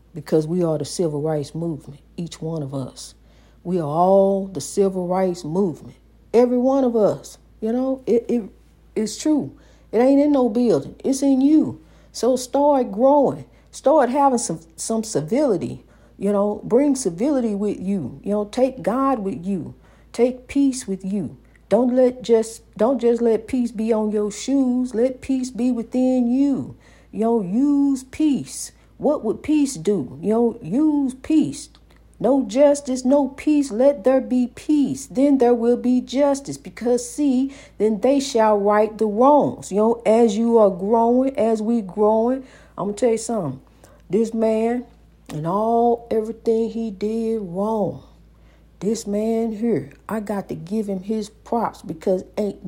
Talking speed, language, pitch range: 165 wpm, English, 200-255 Hz